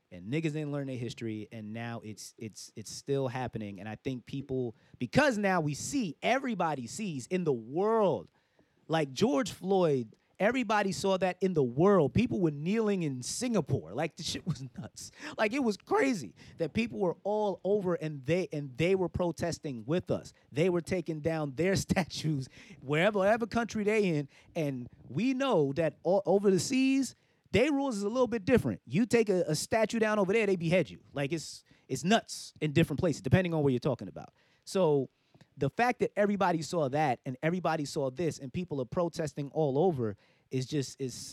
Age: 30-49